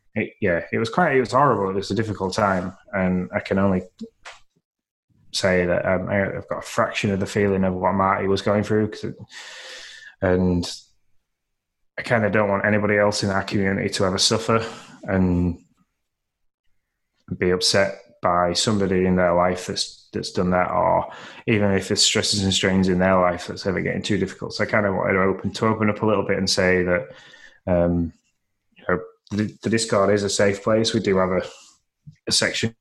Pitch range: 90-105 Hz